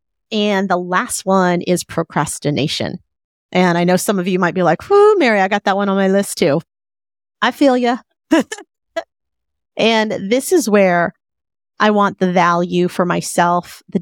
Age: 30-49